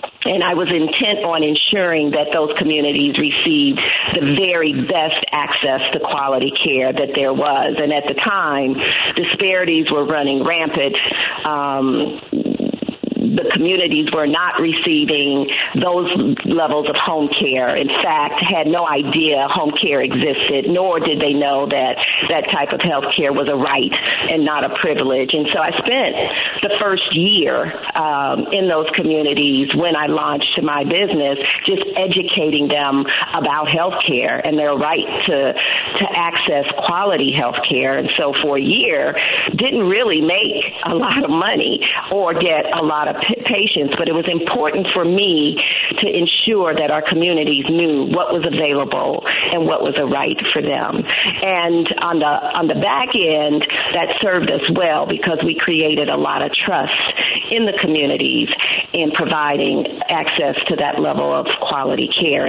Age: 50-69